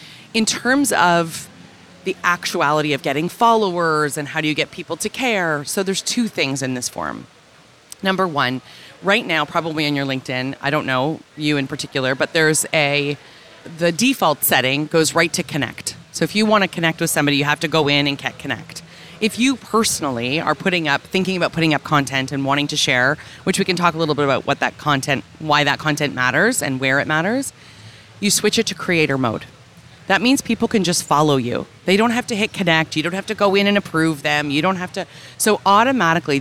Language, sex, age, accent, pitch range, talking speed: English, female, 30-49, American, 145-185 Hz, 215 wpm